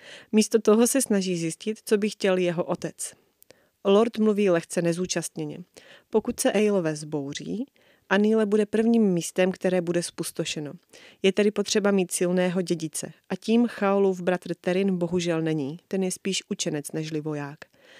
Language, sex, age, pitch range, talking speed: Czech, female, 30-49, 175-210 Hz, 145 wpm